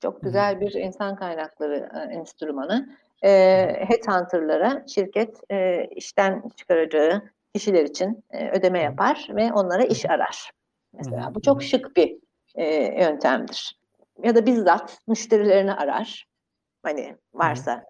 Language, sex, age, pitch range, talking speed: Turkish, female, 60-79, 185-265 Hz, 105 wpm